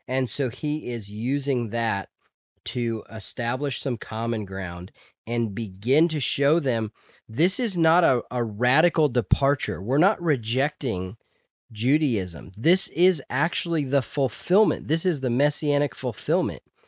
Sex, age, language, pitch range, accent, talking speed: male, 30-49, English, 110-145 Hz, American, 130 wpm